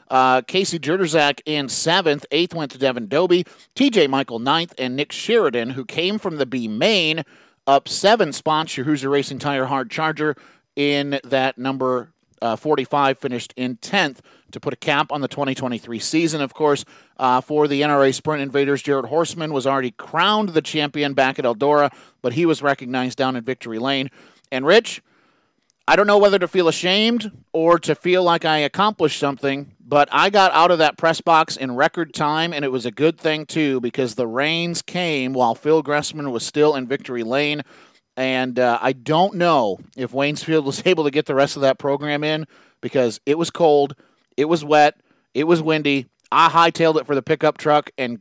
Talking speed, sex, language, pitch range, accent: 190 wpm, male, English, 135-160 Hz, American